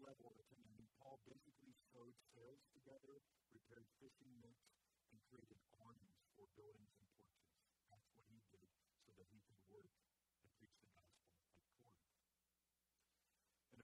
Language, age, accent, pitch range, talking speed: English, 50-69, American, 95-130 Hz, 145 wpm